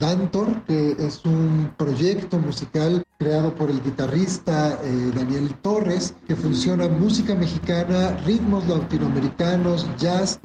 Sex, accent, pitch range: male, Mexican, 150-180 Hz